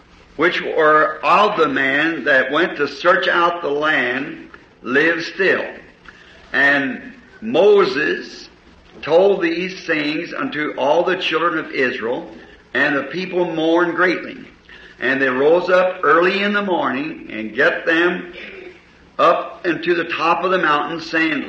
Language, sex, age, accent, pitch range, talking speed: English, male, 60-79, American, 165-195 Hz, 135 wpm